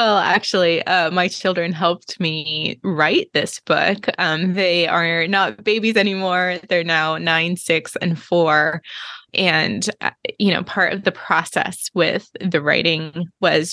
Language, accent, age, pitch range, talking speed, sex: English, American, 20-39, 170-195 Hz, 145 wpm, female